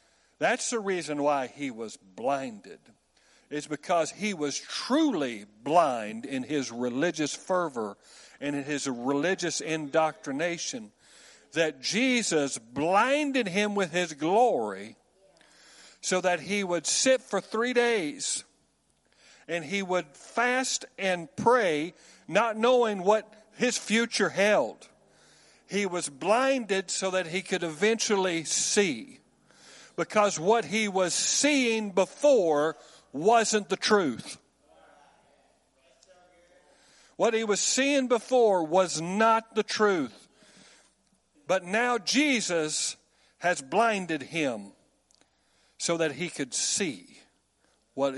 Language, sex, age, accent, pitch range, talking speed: English, male, 50-69, American, 165-220 Hz, 110 wpm